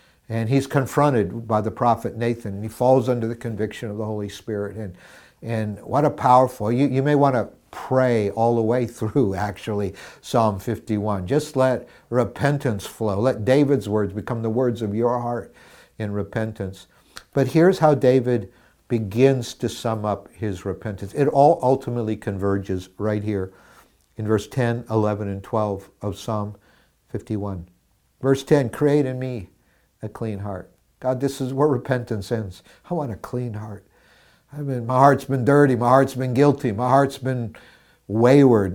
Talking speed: 165 wpm